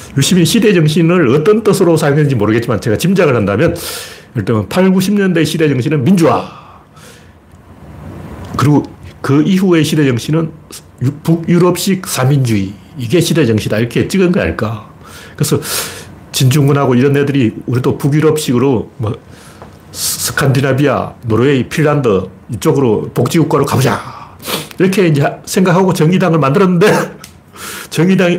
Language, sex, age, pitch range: Korean, male, 40-59, 115-165 Hz